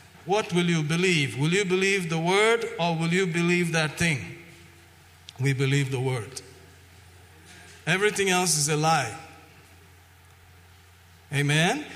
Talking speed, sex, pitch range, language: 125 wpm, male, 135-180 Hz, English